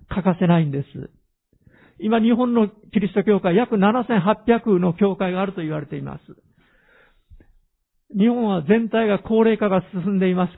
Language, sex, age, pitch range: Japanese, male, 50-69, 170-230 Hz